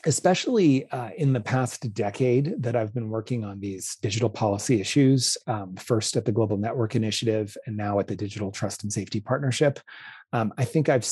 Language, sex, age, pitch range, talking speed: English, male, 30-49, 110-125 Hz, 190 wpm